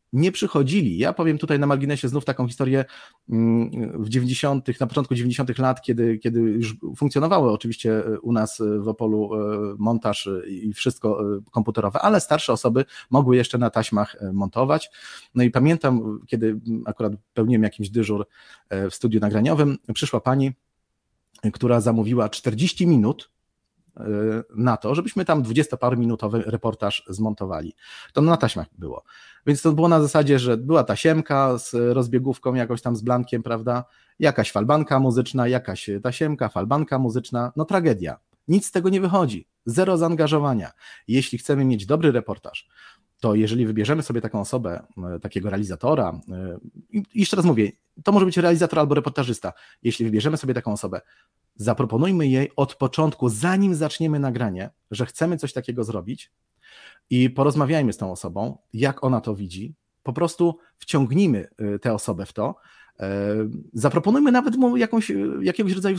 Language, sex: Polish, male